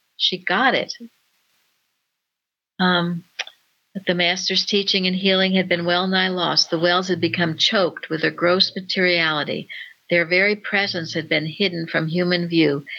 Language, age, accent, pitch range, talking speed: English, 60-79, American, 160-185 Hz, 150 wpm